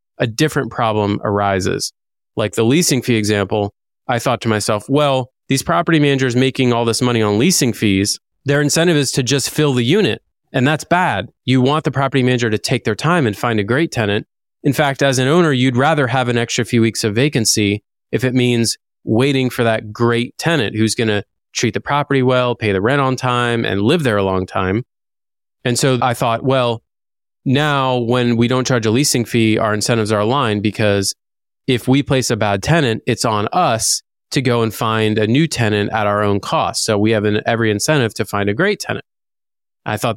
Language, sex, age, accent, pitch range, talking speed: English, male, 20-39, American, 110-140 Hz, 210 wpm